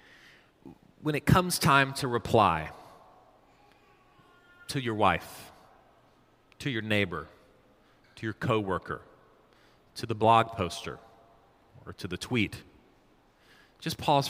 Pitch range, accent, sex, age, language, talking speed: 95-125 Hz, American, male, 30-49, English, 105 wpm